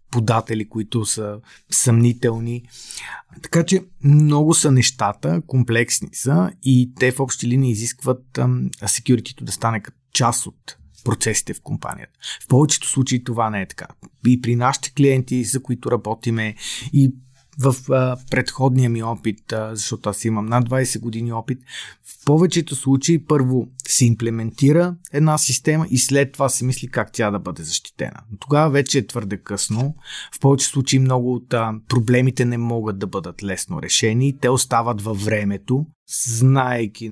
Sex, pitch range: male, 110-135 Hz